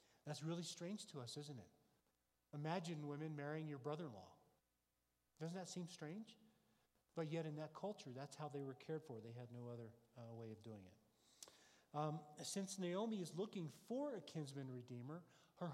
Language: English